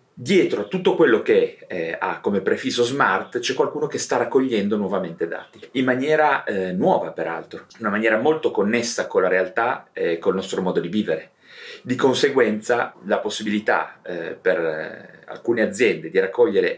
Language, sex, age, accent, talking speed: Italian, male, 30-49, native, 170 wpm